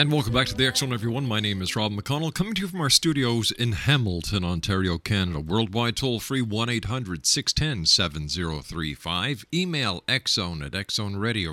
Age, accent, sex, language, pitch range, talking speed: 50-69, American, male, English, 95-130 Hz, 145 wpm